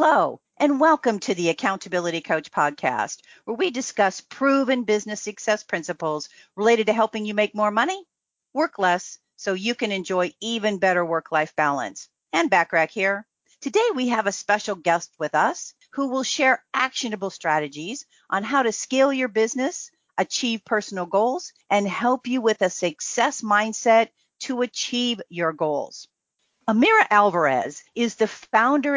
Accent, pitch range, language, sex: American, 180-240 Hz, English, female